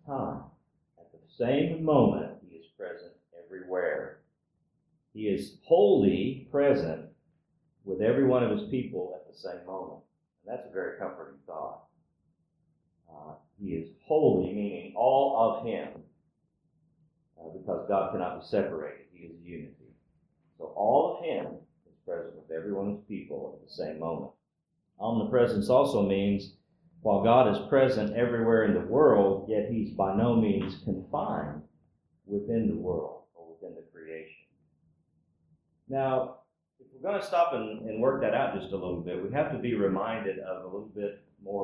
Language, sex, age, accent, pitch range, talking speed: English, male, 50-69, American, 95-150 Hz, 160 wpm